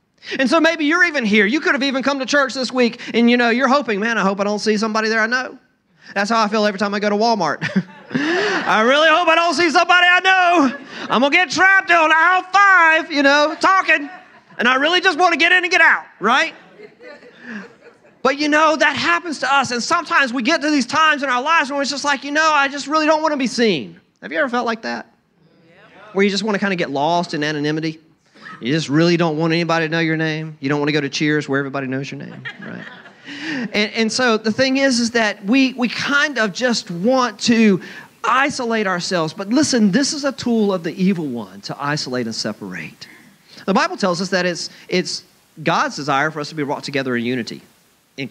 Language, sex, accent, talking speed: English, male, American, 240 wpm